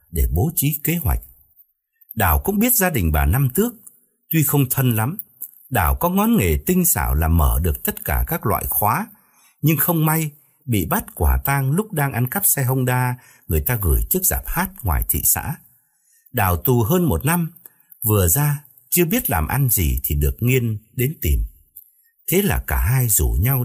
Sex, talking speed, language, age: male, 195 wpm, Vietnamese, 60-79